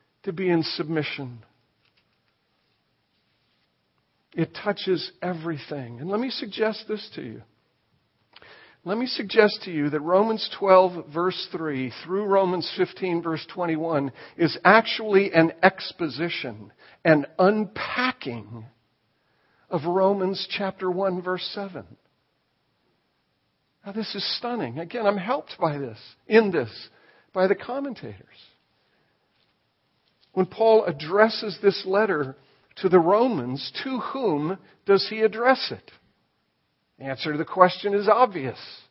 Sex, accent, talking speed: male, American, 115 wpm